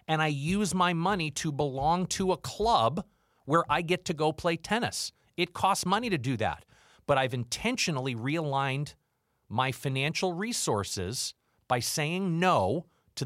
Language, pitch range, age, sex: English, 120-160 Hz, 40-59, male